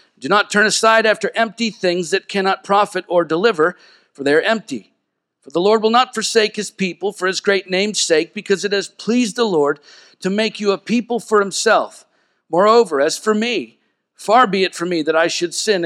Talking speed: 210 wpm